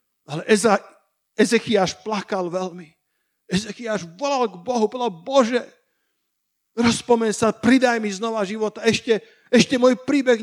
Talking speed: 120 wpm